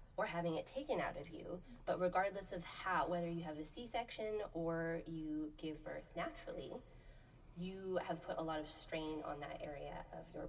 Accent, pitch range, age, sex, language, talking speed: American, 150-175 Hz, 20-39, female, English, 190 wpm